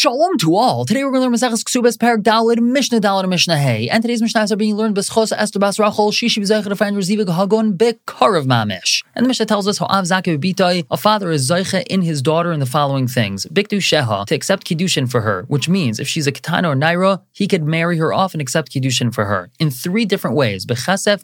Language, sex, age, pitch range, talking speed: English, male, 30-49, 130-190 Hz, 230 wpm